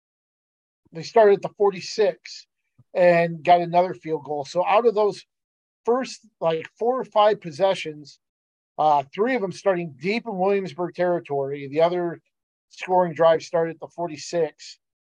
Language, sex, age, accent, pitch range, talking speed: English, male, 40-59, American, 145-185 Hz, 145 wpm